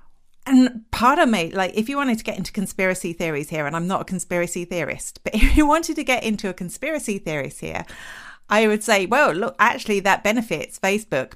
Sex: female